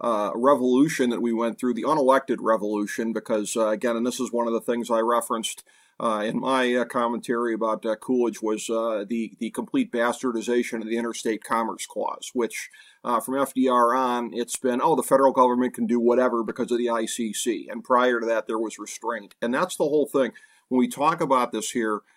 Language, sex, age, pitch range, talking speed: English, male, 40-59, 115-135 Hz, 200 wpm